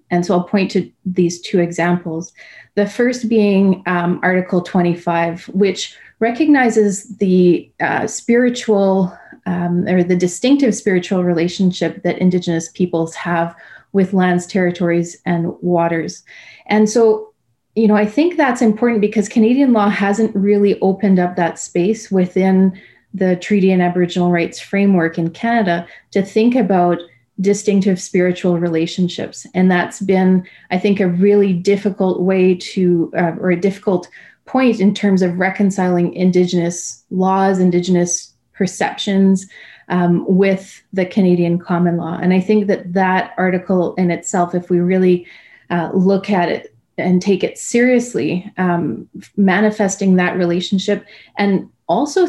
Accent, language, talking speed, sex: Canadian, English, 140 wpm, female